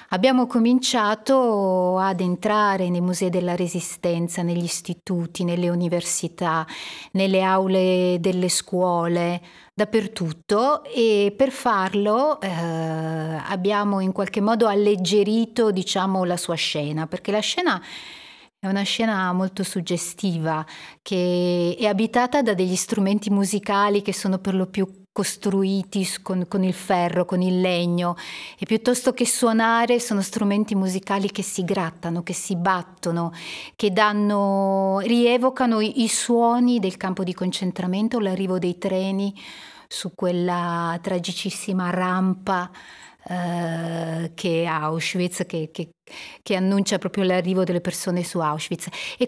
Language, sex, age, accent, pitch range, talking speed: Italian, female, 30-49, native, 175-215 Hz, 125 wpm